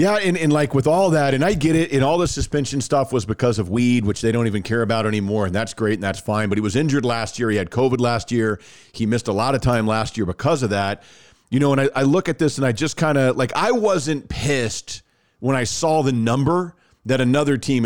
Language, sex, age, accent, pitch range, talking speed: English, male, 40-59, American, 115-150 Hz, 270 wpm